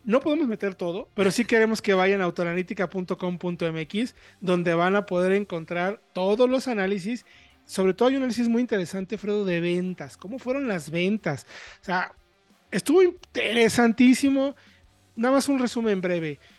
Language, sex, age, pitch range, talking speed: Spanish, male, 40-59, 170-215 Hz, 150 wpm